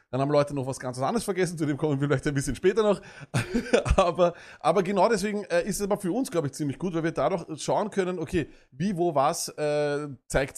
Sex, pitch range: male, 145-190 Hz